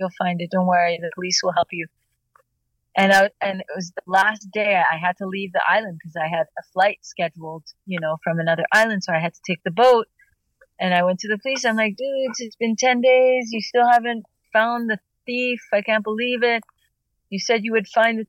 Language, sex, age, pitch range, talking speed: English, female, 30-49, 185-225 Hz, 235 wpm